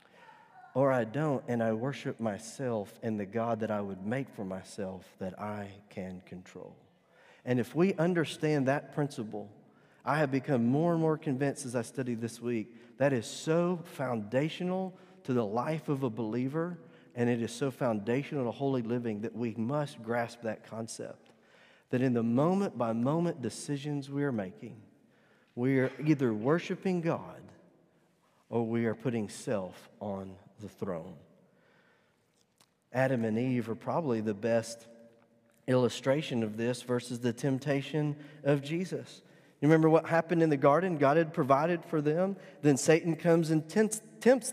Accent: American